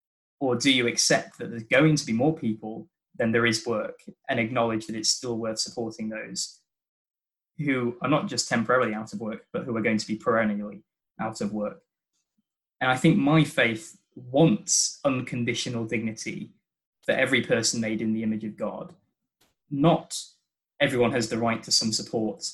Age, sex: 20-39, male